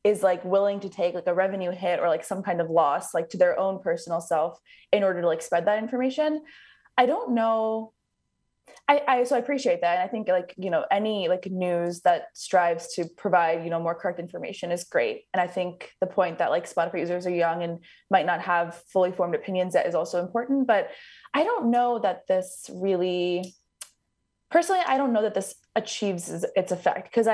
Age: 20-39